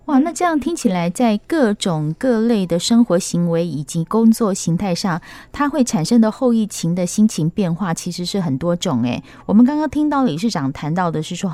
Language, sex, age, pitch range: Chinese, female, 20-39, 170-230 Hz